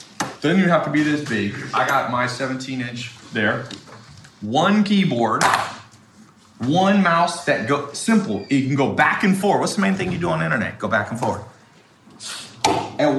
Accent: American